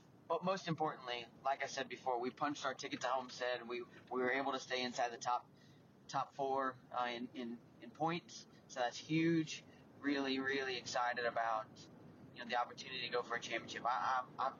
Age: 20-39